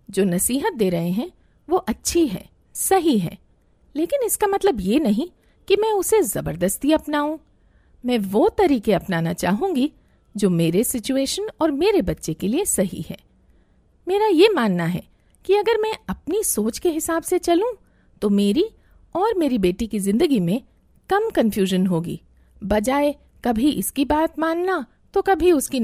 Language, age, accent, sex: Hindi, 50-69, native, female